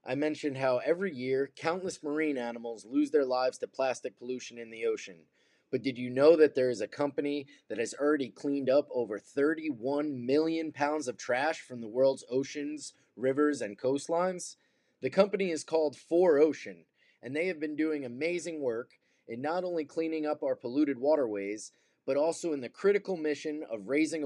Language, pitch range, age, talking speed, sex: English, 130-170 Hz, 20-39, 180 wpm, male